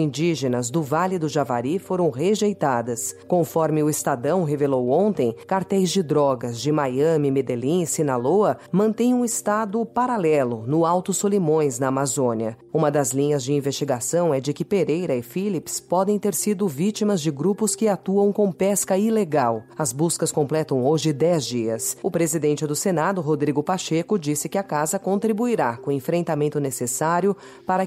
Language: Portuguese